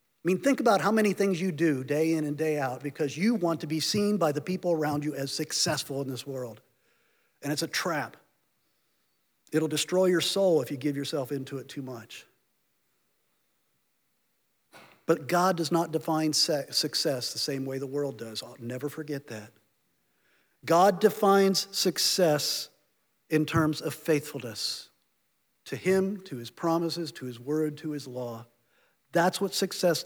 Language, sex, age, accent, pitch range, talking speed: English, male, 50-69, American, 155-225 Hz, 165 wpm